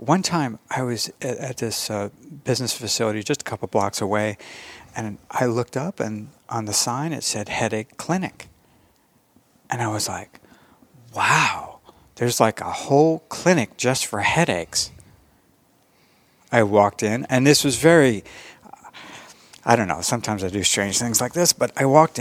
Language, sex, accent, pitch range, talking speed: English, male, American, 100-135 Hz, 160 wpm